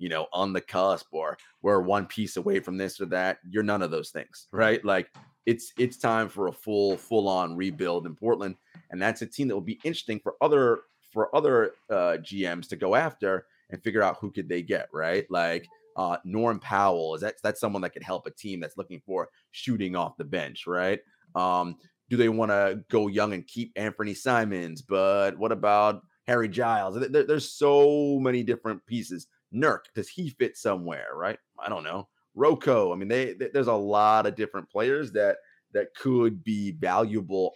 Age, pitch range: 30-49, 90-120 Hz